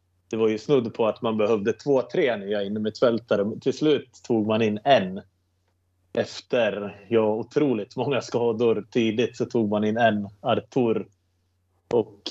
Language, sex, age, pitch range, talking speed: Swedish, male, 30-49, 95-120 Hz, 155 wpm